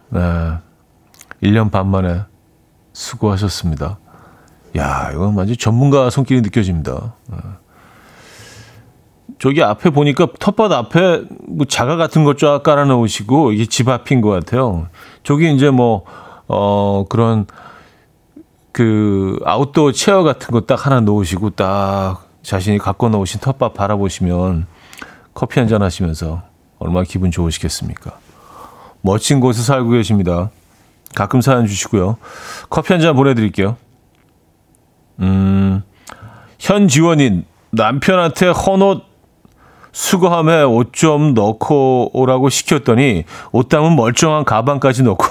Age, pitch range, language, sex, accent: 40-59, 95-135 Hz, Korean, male, native